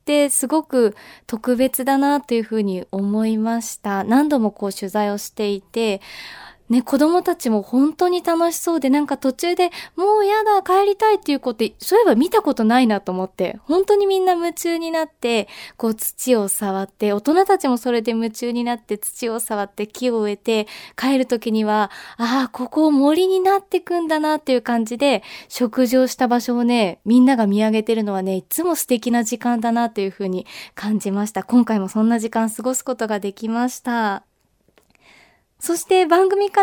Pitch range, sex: 230-345 Hz, female